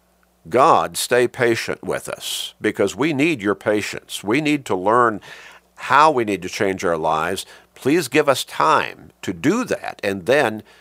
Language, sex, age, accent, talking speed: English, male, 50-69, American, 165 wpm